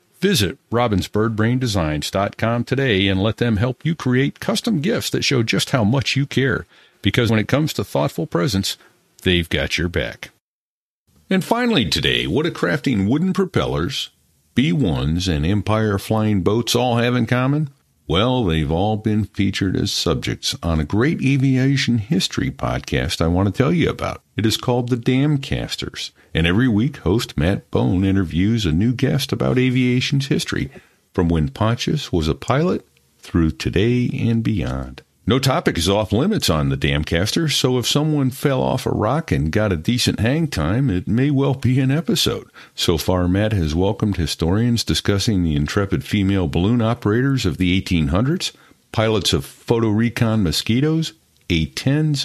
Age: 50-69